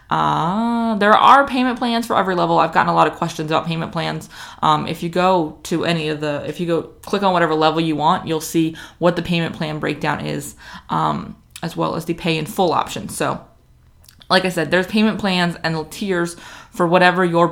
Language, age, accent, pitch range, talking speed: English, 20-39, American, 155-200 Hz, 215 wpm